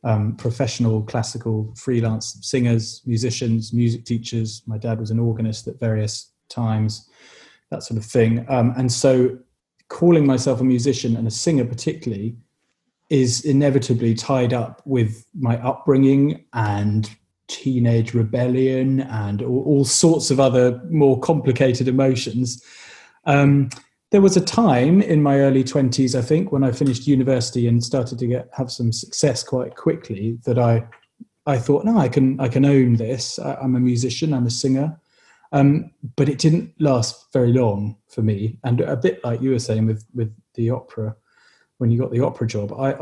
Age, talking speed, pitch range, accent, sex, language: 20-39, 165 wpm, 115-135 Hz, British, male, English